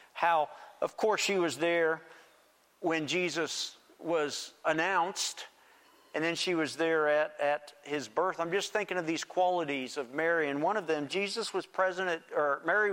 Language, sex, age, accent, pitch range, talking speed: English, male, 50-69, American, 145-180 Hz, 165 wpm